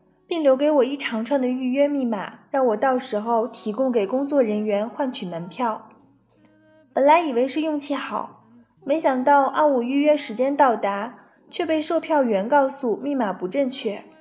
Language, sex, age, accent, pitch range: Chinese, female, 20-39, native, 225-285 Hz